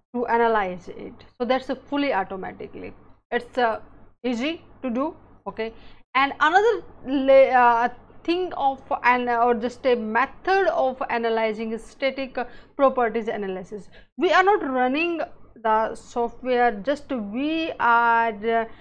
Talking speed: 125 wpm